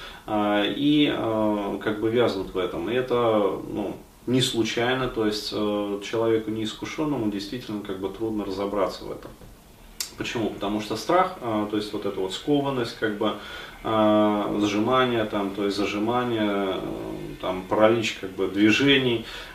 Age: 30-49